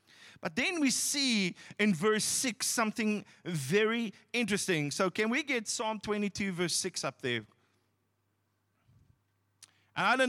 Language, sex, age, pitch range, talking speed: English, male, 30-49, 140-220 Hz, 135 wpm